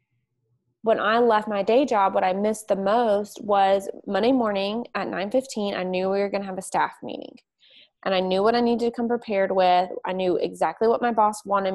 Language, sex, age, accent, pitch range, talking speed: English, female, 20-39, American, 190-230 Hz, 220 wpm